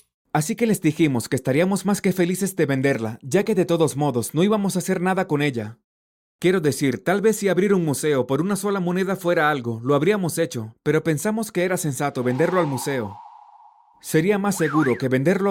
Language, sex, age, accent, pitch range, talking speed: Spanish, male, 30-49, Mexican, 140-190 Hz, 205 wpm